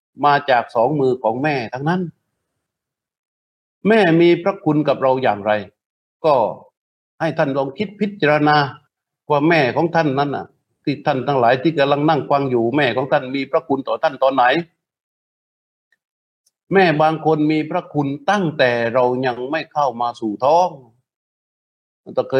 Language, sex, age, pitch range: Thai, male, 60-79, 125-165 Hz